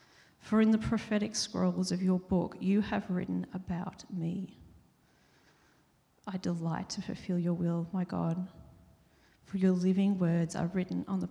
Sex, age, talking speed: female, 40-59, 155 wpm